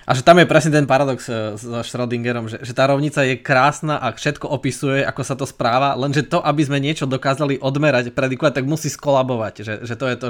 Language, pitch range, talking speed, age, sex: Slovak, 115-140 Hz, 225 wpm, 20-39, male